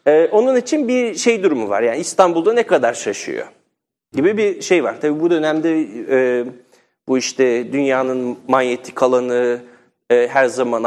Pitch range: 120-205 Hz